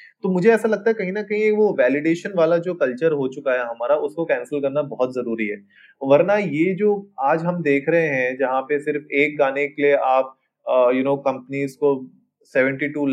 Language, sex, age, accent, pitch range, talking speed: Hindi, male, 20-39, native, 135-175 Hz, 195 wpm